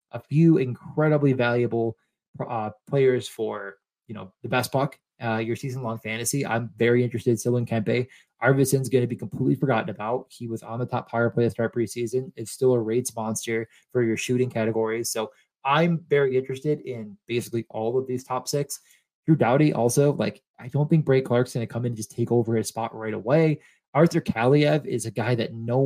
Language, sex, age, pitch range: English, male, 20-39, 115-140 Hz